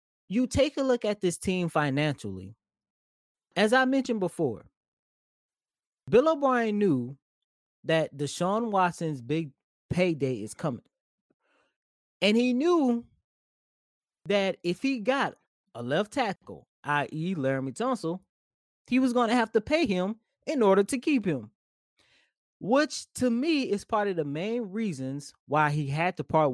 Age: 20-39